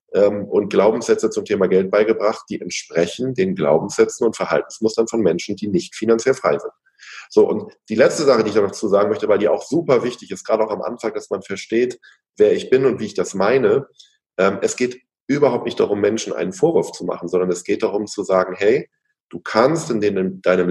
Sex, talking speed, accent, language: male, 210 wpm, German, German